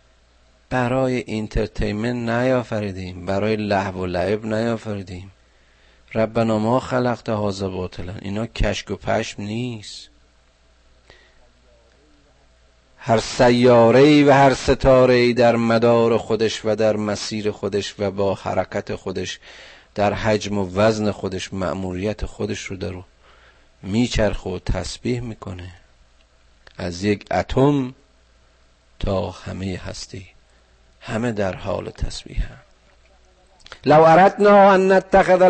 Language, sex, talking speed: Persian, male, 100 wpm